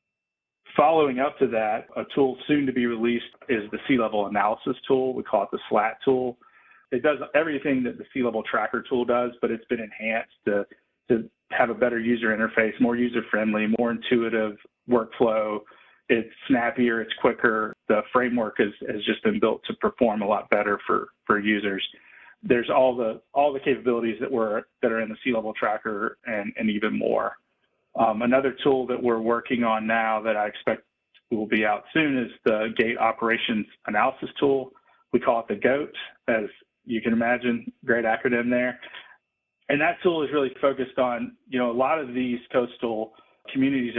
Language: English